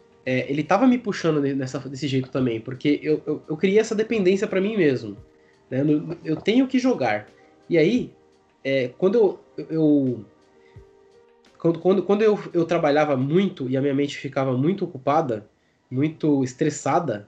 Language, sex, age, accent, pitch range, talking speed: Portuguese, male, 20-39, Brazilian, 125-165 Hz, 165 wpm